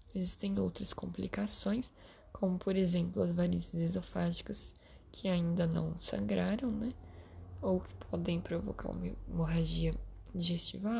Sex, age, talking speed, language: female, 10-29, 115 wpm, Portuguese